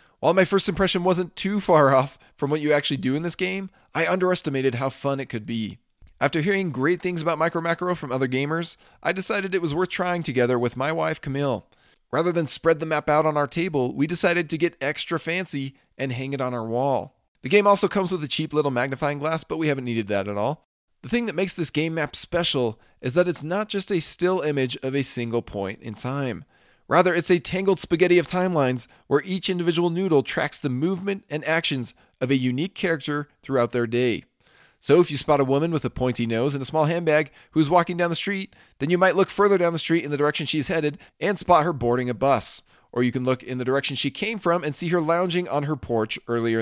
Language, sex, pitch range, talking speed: English, male, 130-175 Hz, 235 wpm